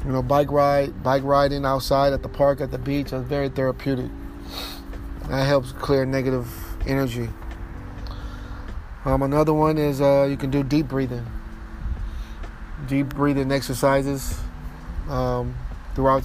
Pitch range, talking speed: 95-140 Hz, 135 wpm